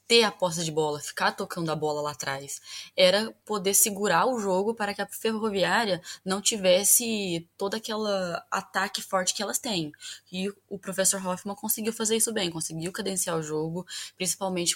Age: 10-29